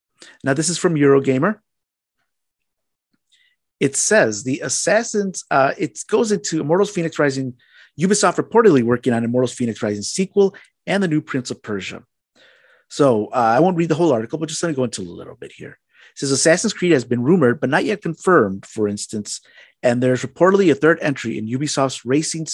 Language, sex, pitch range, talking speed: English, male, 120-170 Hz, 185 wpm